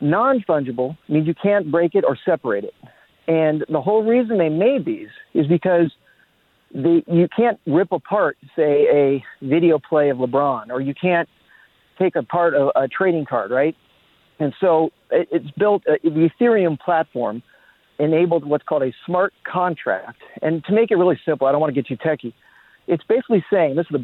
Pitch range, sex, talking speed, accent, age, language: 145-185 Hz, male, 175 wpm, American, 40-59, English